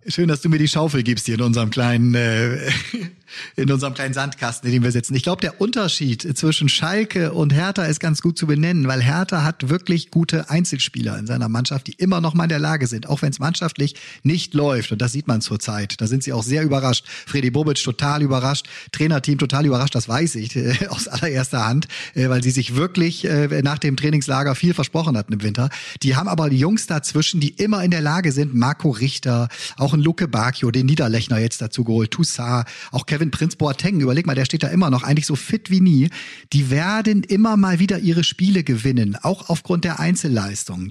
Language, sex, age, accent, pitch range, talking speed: German, male, 40-59, German, 125-160 Hz, 215 wpm